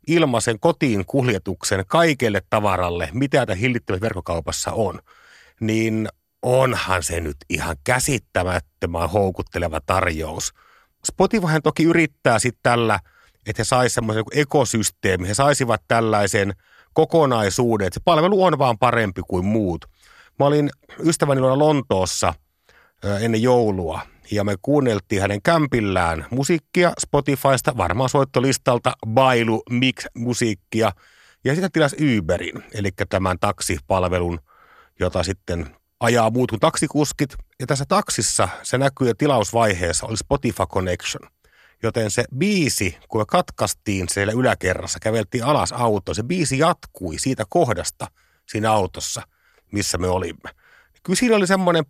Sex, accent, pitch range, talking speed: male, native, 95-140 Hz, 125 wpm